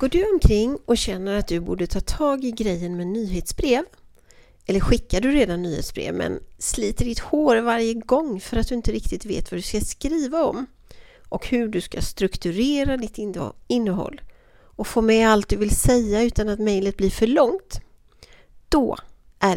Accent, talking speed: native, 180 wpm